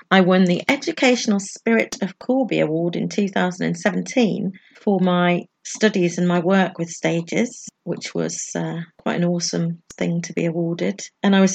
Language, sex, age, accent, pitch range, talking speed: English, female, 40-59, British, 175-210 Hz, 160 wpm